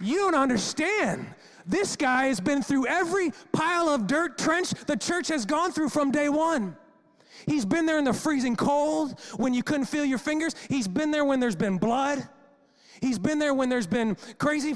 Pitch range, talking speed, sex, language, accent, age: 220-285 Hz, 195 wpm, male, English, American, 30-49